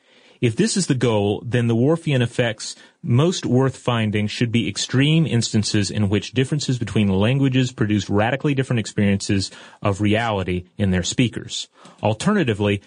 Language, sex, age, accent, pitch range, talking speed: English, male, 30-49, American, 105-140 Hz, 145 wpm